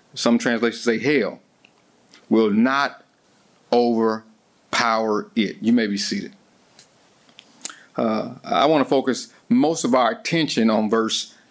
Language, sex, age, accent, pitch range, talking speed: English, male, 50-69, American, 120-160 Hz, 120 wpm